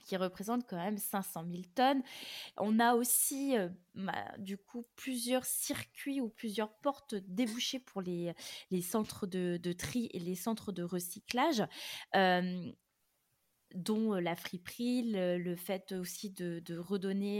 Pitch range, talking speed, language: 185-235 Hz, 150 wpm, French